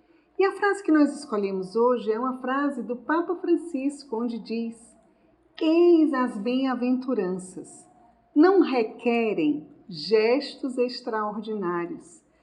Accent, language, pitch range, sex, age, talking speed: Brazilian, Portuguese, 190-300 Hz, female, 50-69, 105 wpm